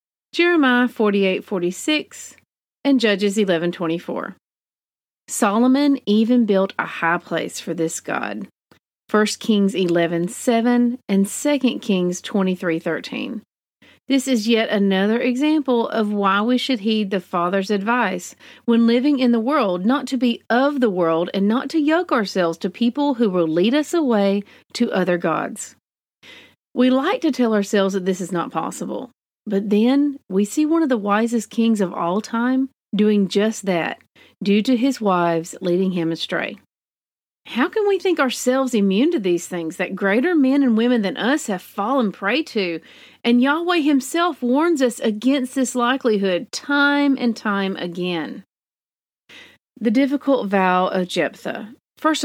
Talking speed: 160 wpm